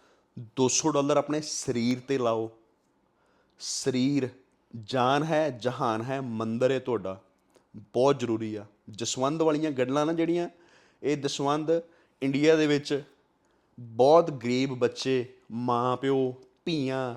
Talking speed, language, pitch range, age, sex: 110 wpm, Punjabi, 125-160 Hz, 30-49, male